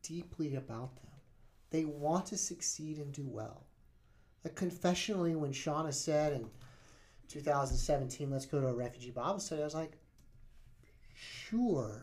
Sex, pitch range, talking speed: male, 125-170 Hz, 135 wpm